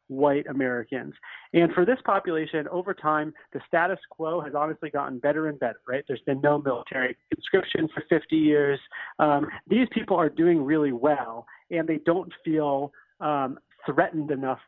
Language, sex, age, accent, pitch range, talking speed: English, male, 30-49, American, 135-165 Hz, 165 wpm